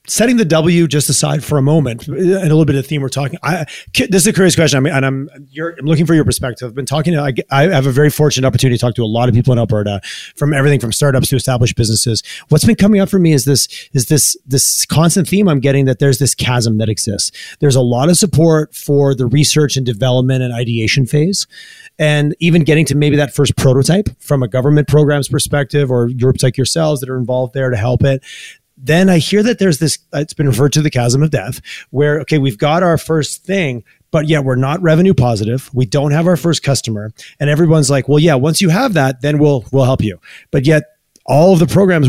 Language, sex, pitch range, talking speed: English, male, 130-160 Hz, 240 wpm